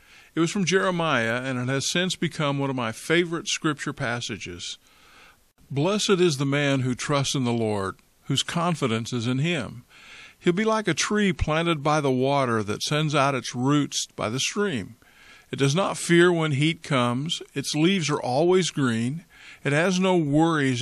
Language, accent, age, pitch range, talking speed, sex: English, American, 50-69, 125-165 Hz, 180 wpm, male